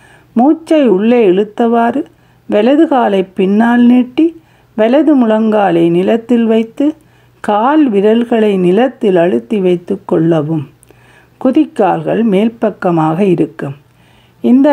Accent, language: native, Tamil